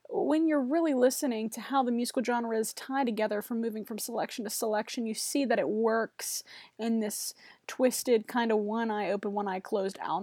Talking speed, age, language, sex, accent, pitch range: 175 wpm, 20-39, English, female, American, 210-245 Hz